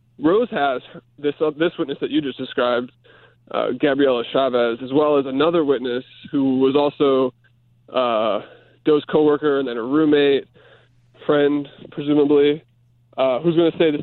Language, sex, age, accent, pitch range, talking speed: English, male, 20-39, American, 125-165 Hz, 155 wpm